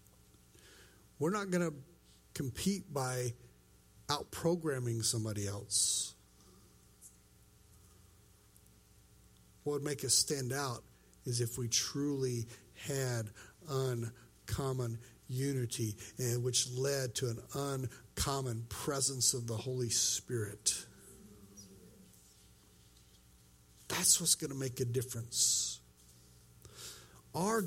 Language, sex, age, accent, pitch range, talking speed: English, male, 60-79, American, 85-140 Hz, 85 wpm